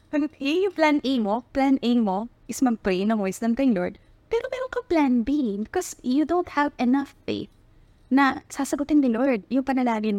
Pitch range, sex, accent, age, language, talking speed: 220-295 Hz, female, native, 20-39, Filipino, 175 wpm